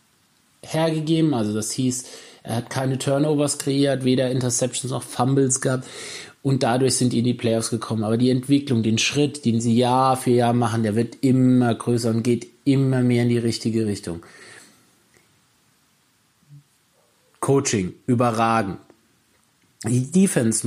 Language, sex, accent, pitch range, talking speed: German, male, German, 115-140 Hz, 140 wpm